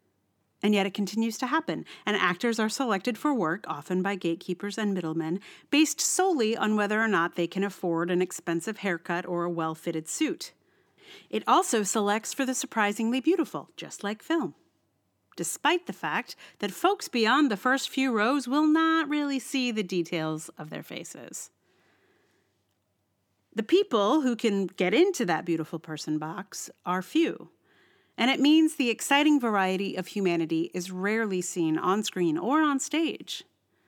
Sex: female